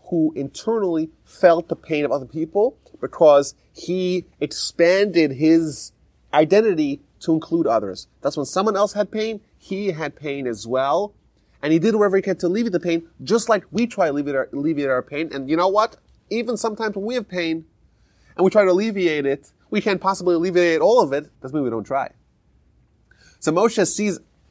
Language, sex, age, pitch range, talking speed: English, male, 30-49, 140-195 Hz, 190 wpm